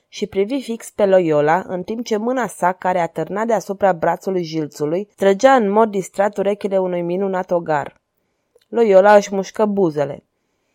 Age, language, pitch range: 20-39, Romanian, 180-215 Hz